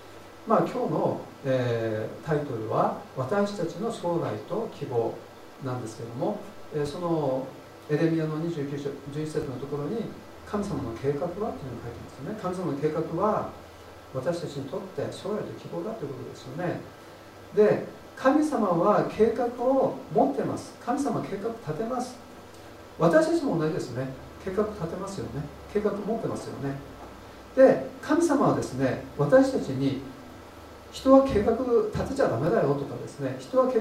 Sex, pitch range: male, 130-225 Hz